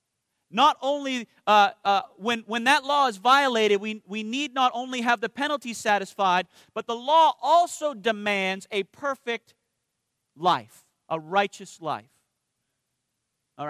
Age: 40-59